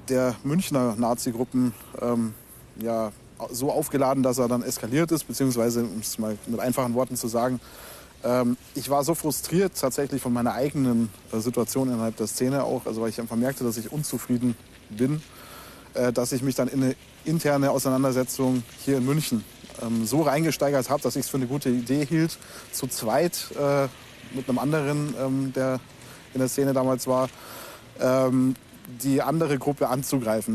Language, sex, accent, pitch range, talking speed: German, male, German, 120-140 Hz, 170 wpm